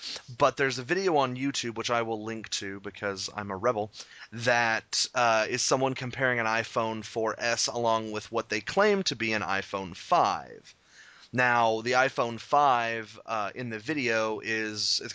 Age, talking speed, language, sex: 30-49, 170 wpm, English, male